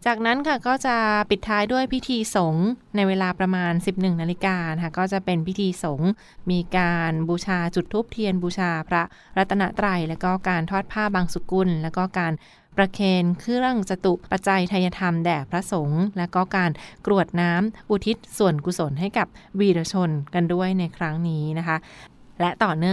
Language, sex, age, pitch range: Thai, female, 20-39, 170-195 Hz